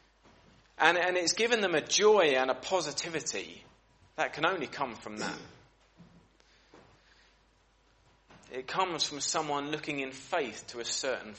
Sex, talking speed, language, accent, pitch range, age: male, 135 wpm, English, British, 125-170 Hz, 30-49